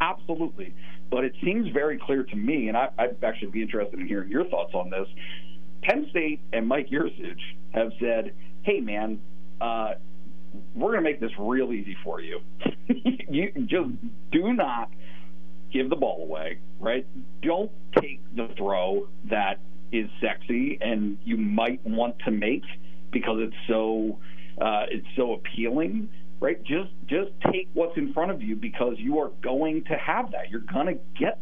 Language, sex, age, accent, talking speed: English, male, 50-69, American, 165 wpm